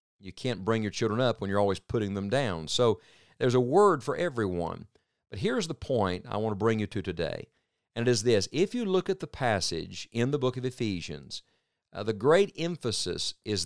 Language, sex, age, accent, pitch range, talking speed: English, male, 50-69, American, 100-125 Hz, 215 wpm